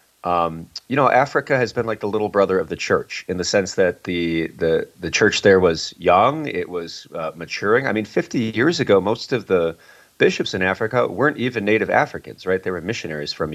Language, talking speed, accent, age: English, 215 wpm, American, 30-49